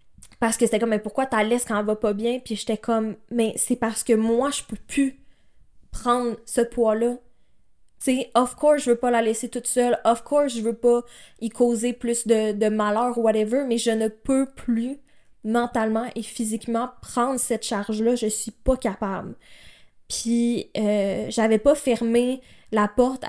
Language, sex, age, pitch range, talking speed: French, female, 20-39, 215-245 Hz, 195 wpm